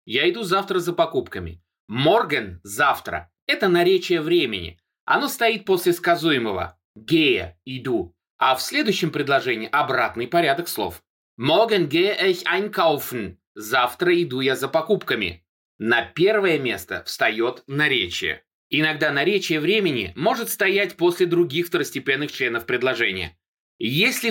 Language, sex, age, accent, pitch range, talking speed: Russian, male, 20-39, native, 150-200 Hz, 115 wpm